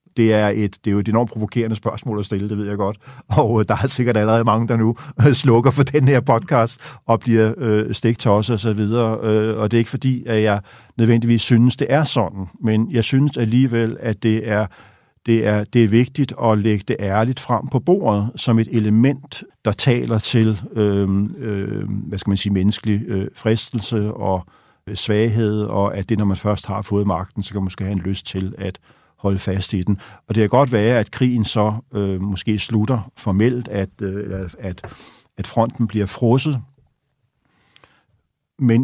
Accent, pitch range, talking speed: native, 100-125 Hz, 200 wpm